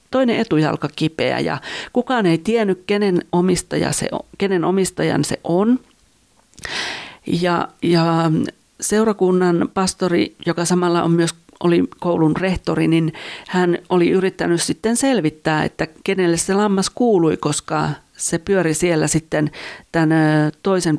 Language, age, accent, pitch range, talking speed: Finnish, 40-59, native, 160-200 Hz, 125 wpm